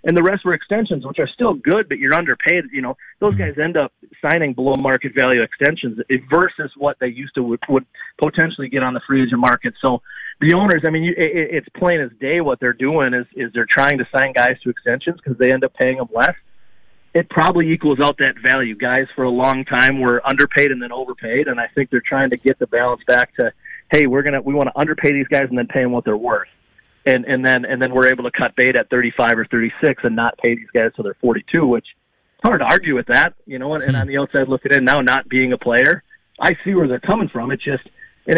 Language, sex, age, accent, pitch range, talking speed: English, male, 30-49, American, 125-150 Hz, 250 wpm